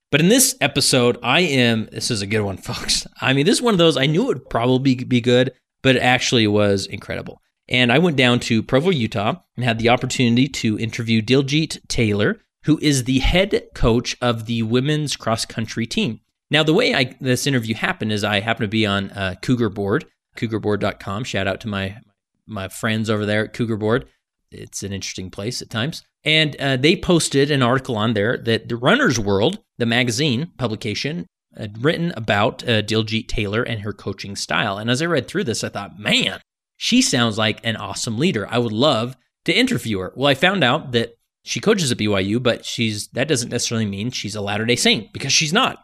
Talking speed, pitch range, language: 205 wpm, 110-135 Hz, English